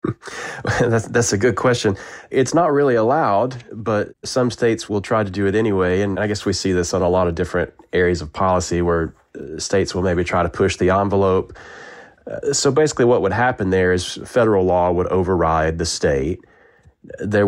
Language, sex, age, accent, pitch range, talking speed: English, male, 30-49, American, 90-105 Hz, 190 wpm